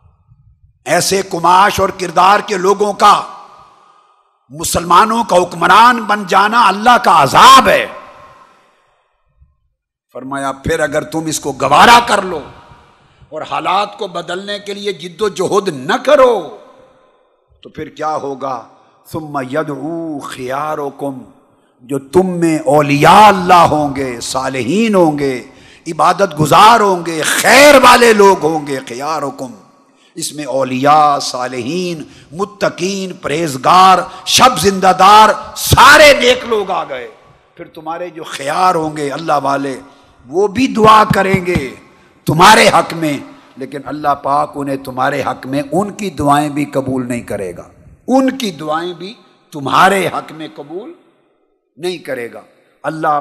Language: Urdu